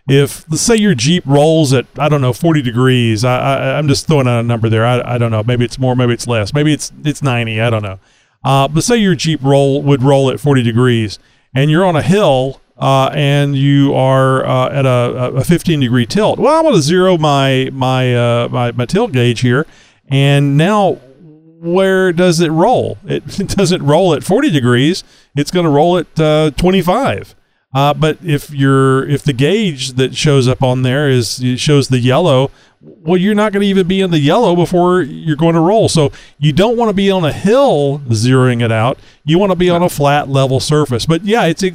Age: 40-59